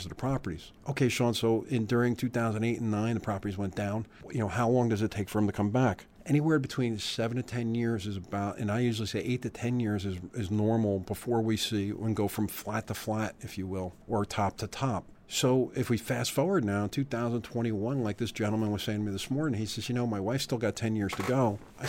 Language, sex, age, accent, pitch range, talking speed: English, male, 40-59, American, 105-120 Hz, 250 wpm